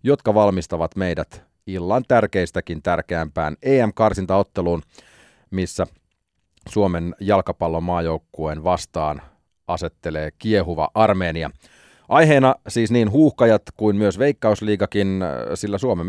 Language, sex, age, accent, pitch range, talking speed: Finnish, male, 30-49, native, 85-105 Hz, 85 wpm